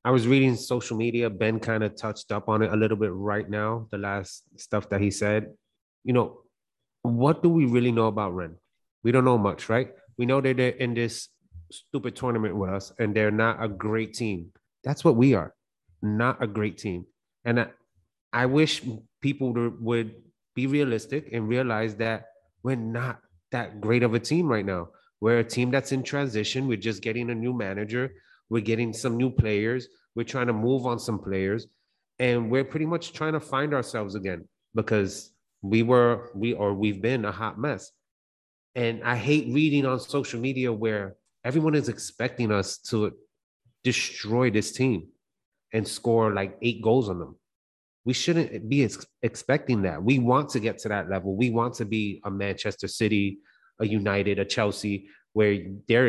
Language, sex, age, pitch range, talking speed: English, male, 30-49, 105-125 Hz, 185 wpm